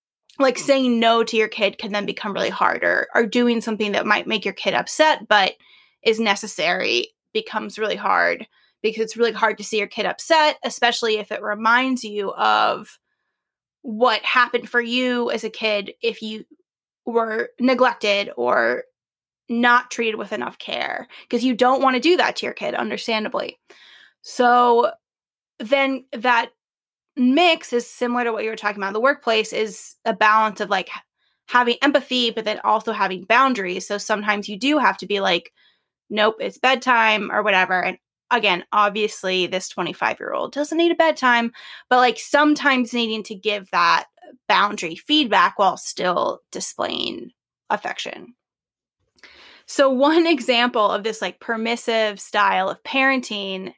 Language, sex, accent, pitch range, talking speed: English, female, American, 210-255 Hz, 160 wpm